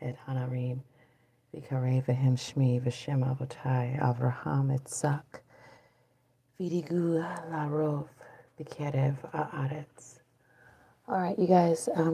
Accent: American